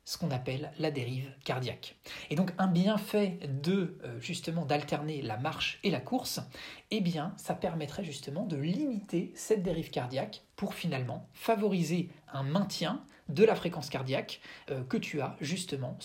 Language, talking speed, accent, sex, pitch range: French, 155 wpm, French, male, 145-200 Hz